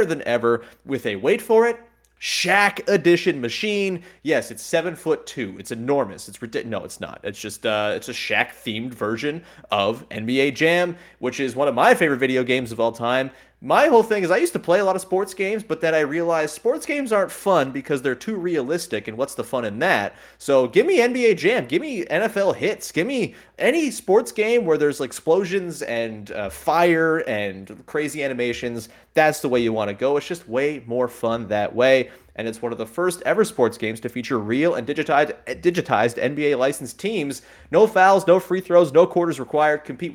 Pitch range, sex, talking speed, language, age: 120-175 Hz, male, 205 wpm, English, 30-49